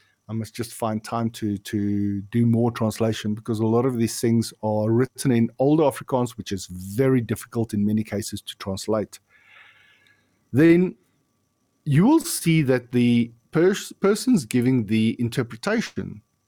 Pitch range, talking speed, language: 105-130 Hz, 150 wpm, English